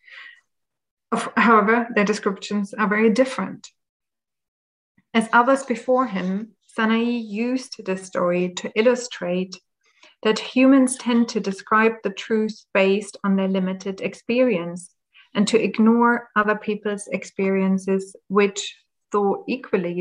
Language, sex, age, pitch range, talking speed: English, female, 30-49, 195-235 Hz, 110 wpm